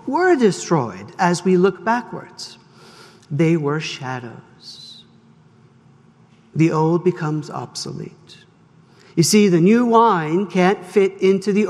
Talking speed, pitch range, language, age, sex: 115 wpm, 170-225 Hz, English, 60-79, male